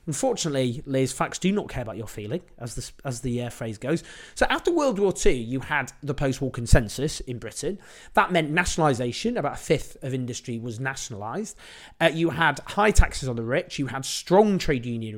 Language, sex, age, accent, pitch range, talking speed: English, male, 30-49, British, 125-170 Hz, 200 wpm